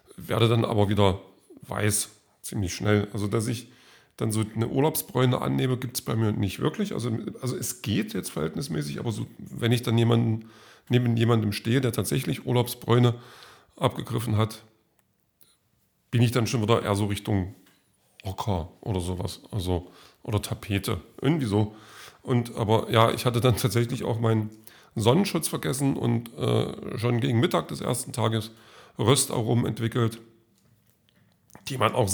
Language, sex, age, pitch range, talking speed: German, male, 40-59, 105-125 Hz, 150 wpm